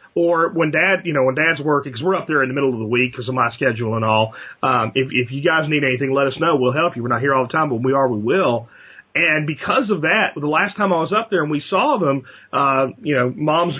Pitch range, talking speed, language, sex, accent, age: 135-200 Hz, 295 wpm, English, male, American, 40-59